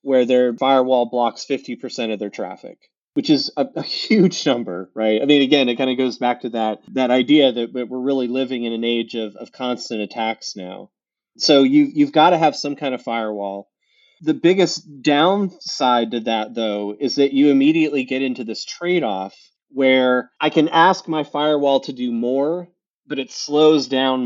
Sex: male